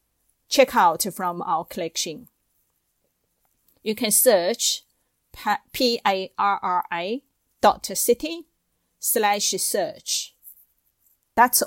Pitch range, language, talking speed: 175-205 Hz, English, 60 wpm